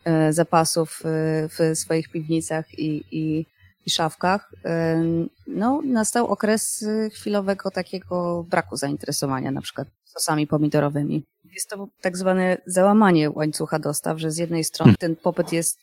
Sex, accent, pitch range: female, native, 155-175 Hz